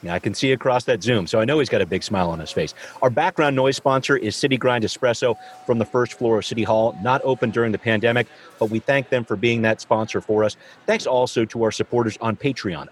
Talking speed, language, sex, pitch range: 255 wpm, English, male, 105-130 Hz